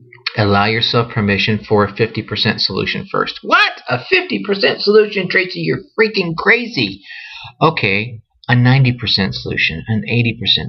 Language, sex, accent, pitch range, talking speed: English, male, American, 105-135 Hz, 120 wpm